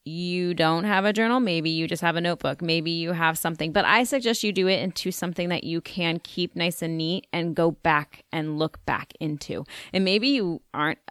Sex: female